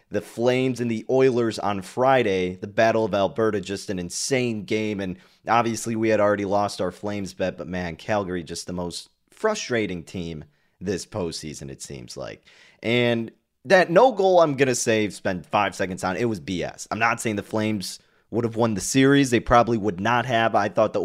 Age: 30-49